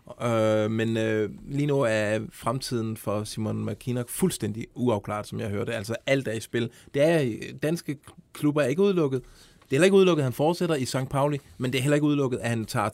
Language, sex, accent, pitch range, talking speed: Danish, male, native, 110-145 Hz, 220 wpm